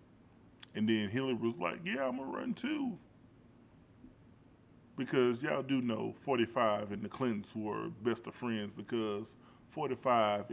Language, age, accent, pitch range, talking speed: English, 20-39, American, 110-125 Hz, 140 wpm